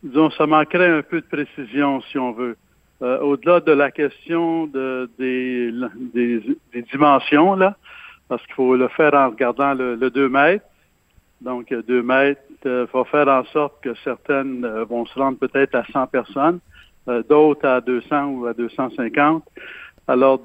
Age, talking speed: 60-79, 165 wpm